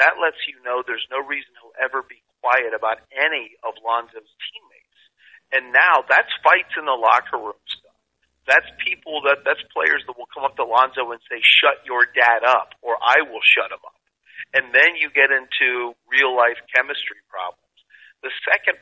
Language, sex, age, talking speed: English, male, 40-59, 190 wpm